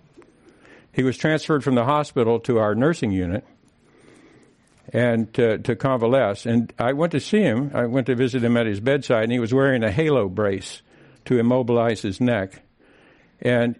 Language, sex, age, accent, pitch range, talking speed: English, male, 60-79, American, 110-140 Hz, 175 wpm